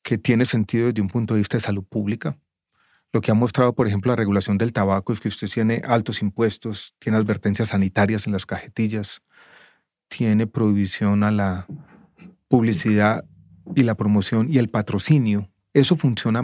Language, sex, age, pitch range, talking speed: English, male, 30-49, 105-125 Hz, 170 wpm